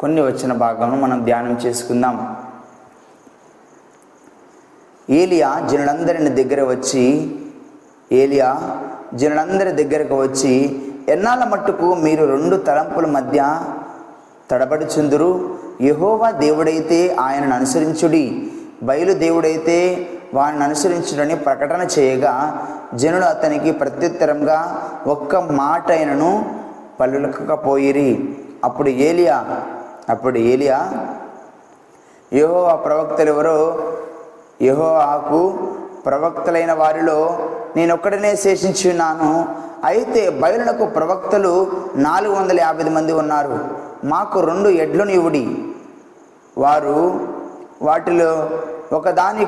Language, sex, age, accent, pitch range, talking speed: Telugu, male, 20-39, native, 145-190 Hz, 80 wpm